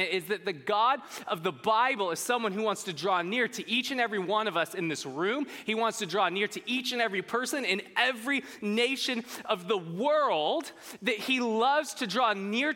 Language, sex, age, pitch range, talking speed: English, male, 20-39, 185-250 Hz, 215 wpm